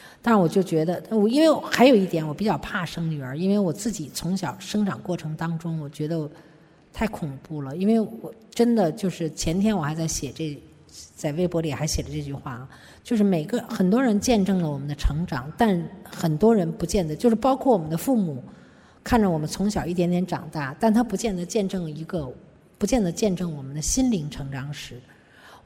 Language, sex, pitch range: Chinese, female, 150-205 Hz